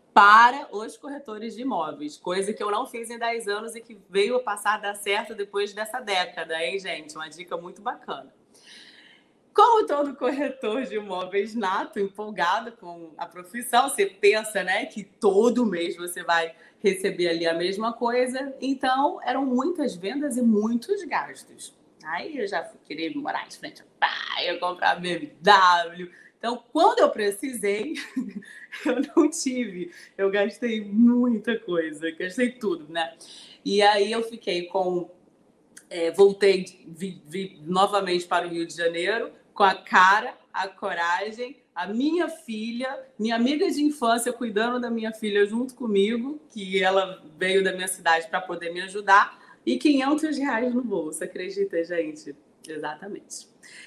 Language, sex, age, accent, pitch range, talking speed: Portuguese, female, 30-49, Brazilian, 180-245 Hz, 150 wpm